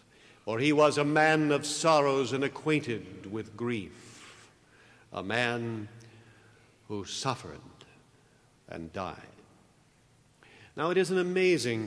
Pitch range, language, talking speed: 120-160 Hz, English, 110 wpm